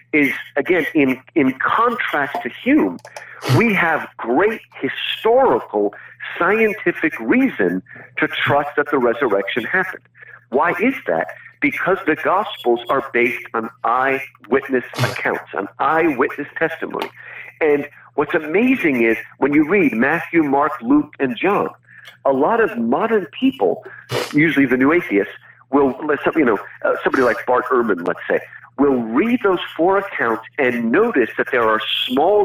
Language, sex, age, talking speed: English, male, 50-69, 135 wpm